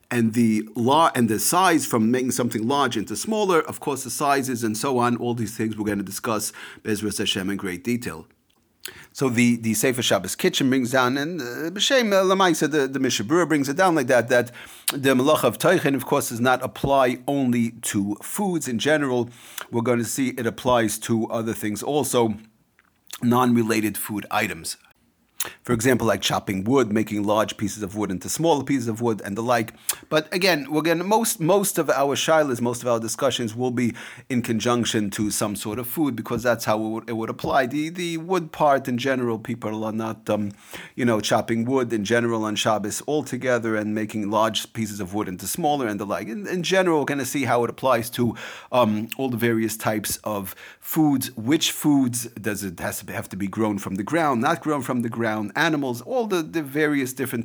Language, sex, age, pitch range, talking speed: English, male, 40-59, 110-140 Hz, 200 wpm